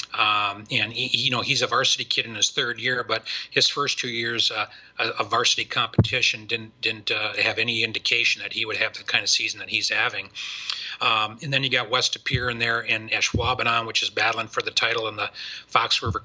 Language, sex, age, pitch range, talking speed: English, male, 40-59, 110-130 Hz, 220 wpm